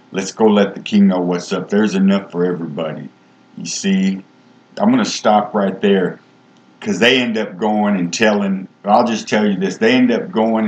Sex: male